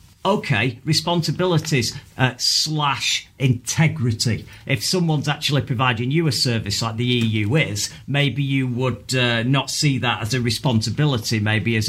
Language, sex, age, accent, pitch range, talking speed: English, male, 40-59, British, 115-145 Hz, 140 wpm